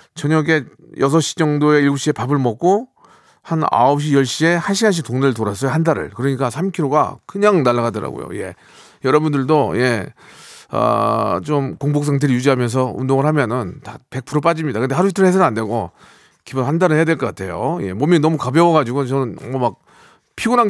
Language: Korean